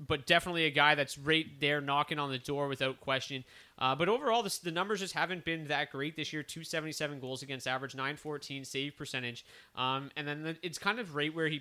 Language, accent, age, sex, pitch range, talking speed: English, American, 20-39, male, 125-150 Hz, 235 wpm